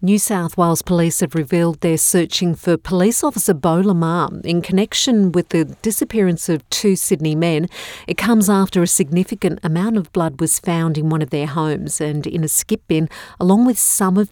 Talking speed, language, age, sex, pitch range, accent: 195 wpm, English, 50-69, female, 165-195 Hz, Australian